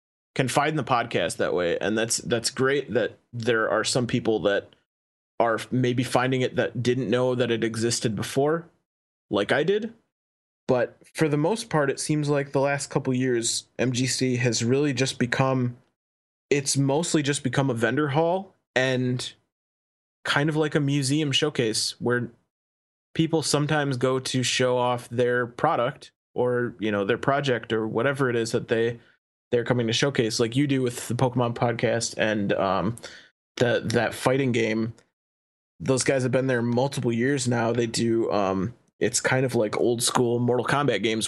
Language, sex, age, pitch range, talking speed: English, male, 20-39, 115-140 Hz, 170 wpm